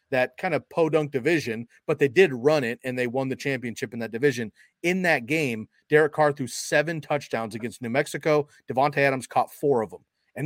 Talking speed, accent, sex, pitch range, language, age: 205 wpm, American, male, 120-155 Hz, English, 30-49